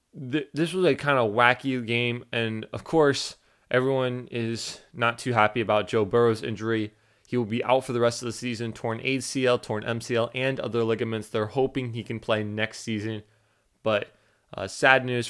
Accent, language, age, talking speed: American, English, 20-39, 185 wpm